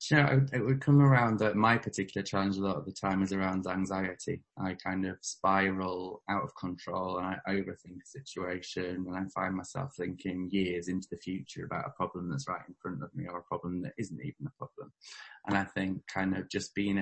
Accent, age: British, 20-39